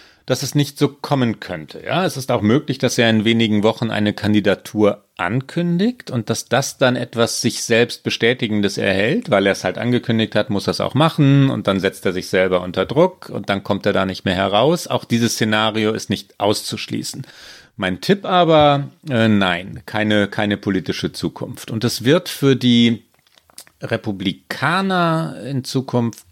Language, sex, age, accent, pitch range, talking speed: German, male, 40-59, German, 100-130 Hz, 180 wpm